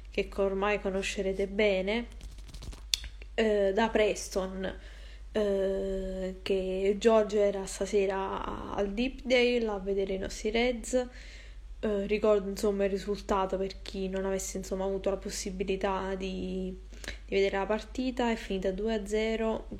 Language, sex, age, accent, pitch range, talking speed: Italian, female, 20-39, native, 190-210 Hz, 120 wpm